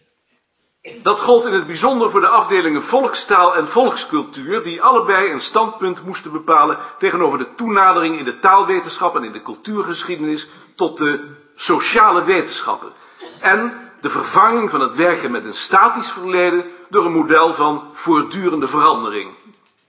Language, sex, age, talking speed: Dutch, male, 50-69, 140 wpm